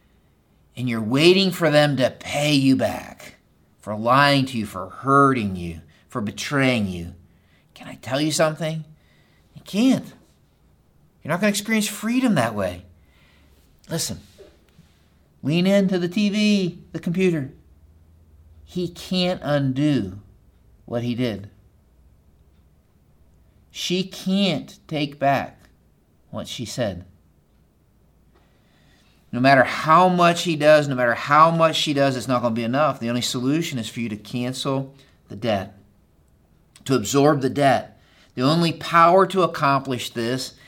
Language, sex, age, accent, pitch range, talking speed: English, male, 50-69, American, 95-150 Hz, 135 wpm